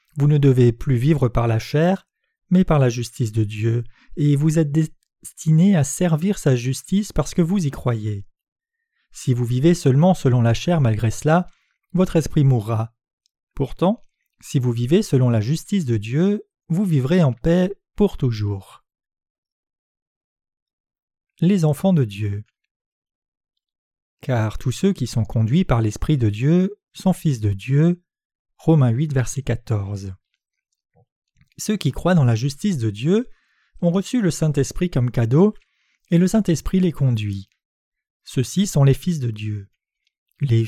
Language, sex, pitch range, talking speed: French, male, 120-180 Hz, 150 wpm